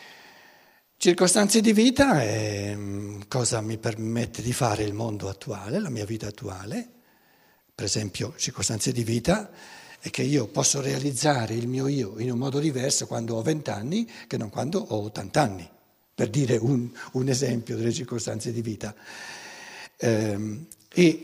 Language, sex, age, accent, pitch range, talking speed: Italian, male, 60-79, native, 115-185 Hz, 145 wpm